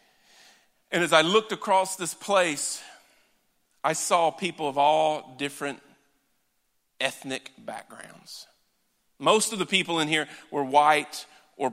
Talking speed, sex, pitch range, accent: 125 wpm, male, 155-230 Hz, American